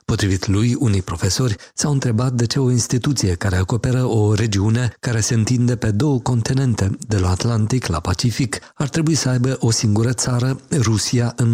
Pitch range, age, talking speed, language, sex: 105-125 Hz, 50-69, 175 wpm, Romanian, male